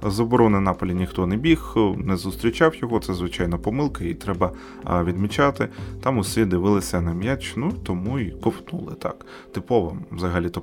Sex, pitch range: male, 90-130 Hz